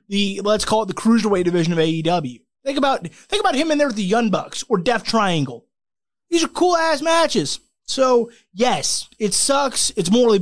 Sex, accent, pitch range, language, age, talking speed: male, American, 165-225 Hz, English, 20-39, 185 wpm